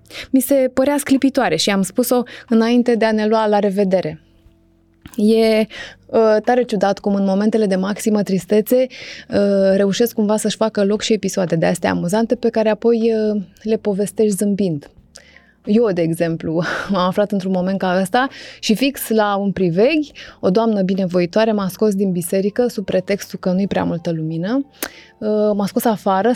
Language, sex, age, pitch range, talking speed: Romanian, female, 20-39, 190-230 Hz, 160 wpm